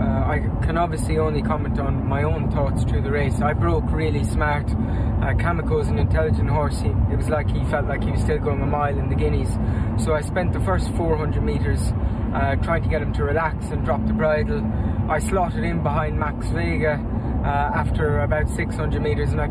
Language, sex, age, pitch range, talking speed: English, male, 20-39, 75-105 Hz, 210 wpm